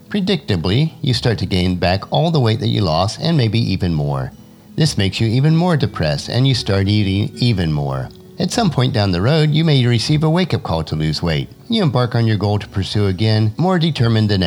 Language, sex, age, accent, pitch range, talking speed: English, male, 50-69, American, 95-140 Hz, 225 wpm